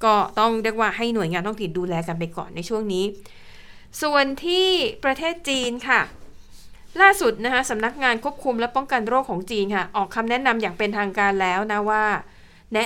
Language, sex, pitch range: Thai, female, 200-255 Hz